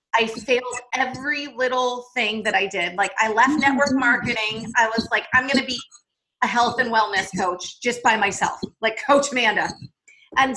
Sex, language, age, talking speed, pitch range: female, English, 30-49, 180 wpm, 220-265 Hz